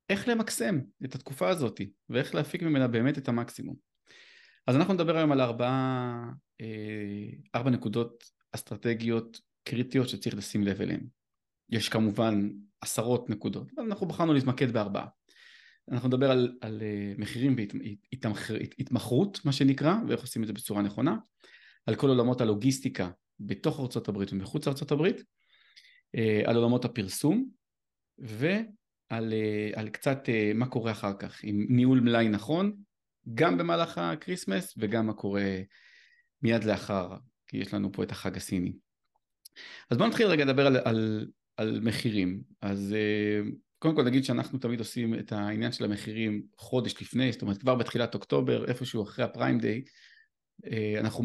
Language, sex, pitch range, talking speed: Hebrew, male, 105-135 Hz, 140 wpm